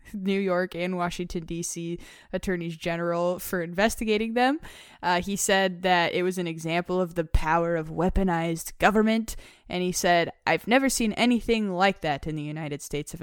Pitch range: 165-215 Hz